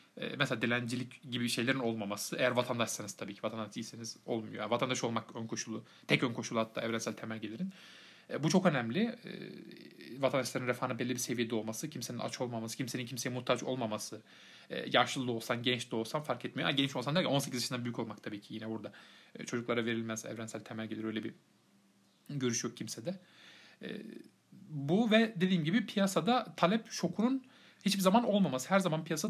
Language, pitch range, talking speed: Turkish, 120-185 Hz, 170 wpm